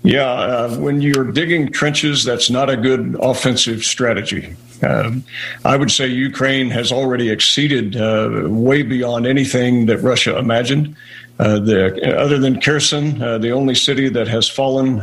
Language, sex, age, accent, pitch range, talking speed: English, male, 50-69, American, 115-135 Hz, 155 wpm